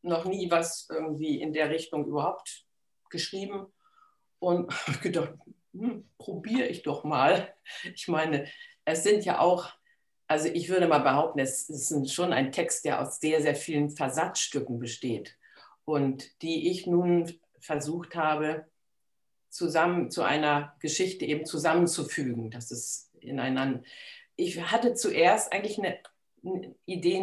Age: 50-69